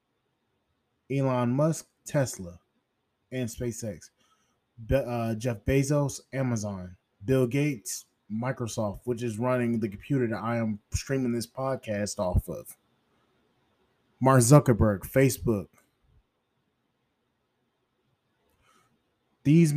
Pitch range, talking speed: 110-135 Hz, 90 wpm